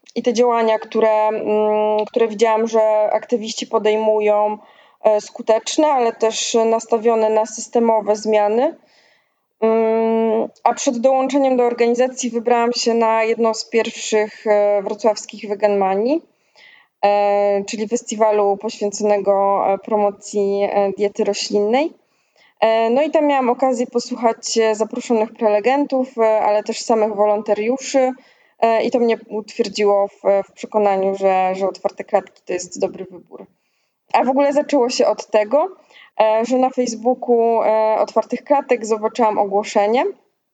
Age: 20-39